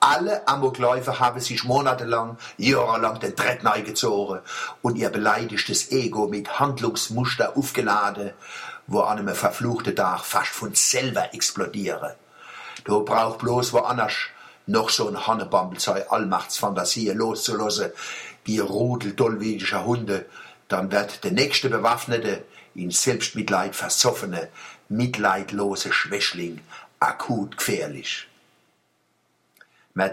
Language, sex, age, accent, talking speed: German, male, 60-79, German, 100 wpm